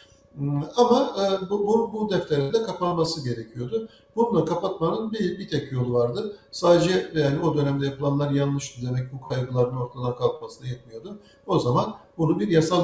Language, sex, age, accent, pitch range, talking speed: Turkish, male, 60-79, native, 140-180 Hz, 150 wpm